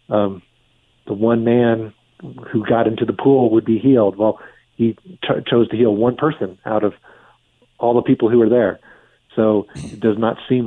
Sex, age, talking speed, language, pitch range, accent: male, 40-59, 180 wpm, English, 105-120 Hz, American